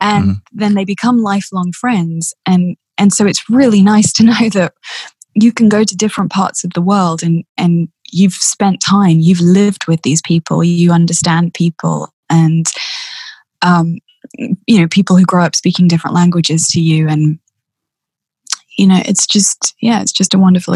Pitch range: 175-215 Hz